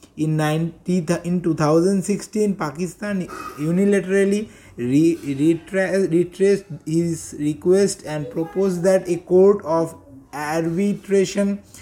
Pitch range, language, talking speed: 160-200 Hz, English, 80 wpm